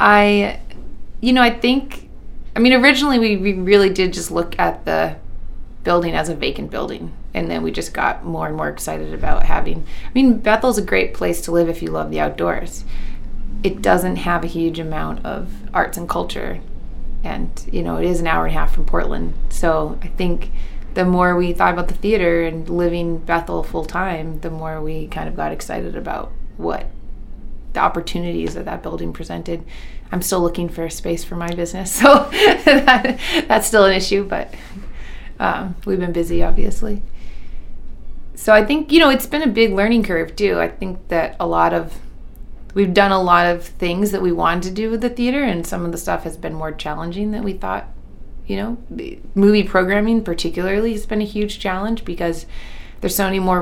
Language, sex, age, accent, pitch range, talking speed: English, female, 20-39, American, 165-210 Hz, 195 wpm